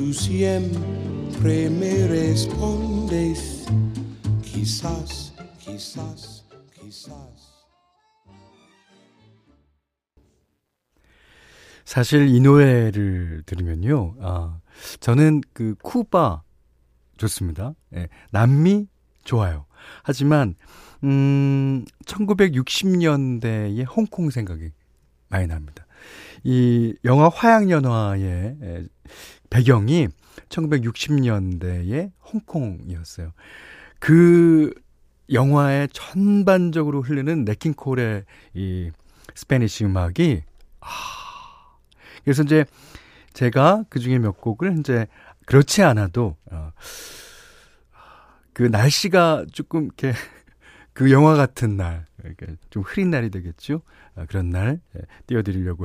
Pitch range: 90-145 Hz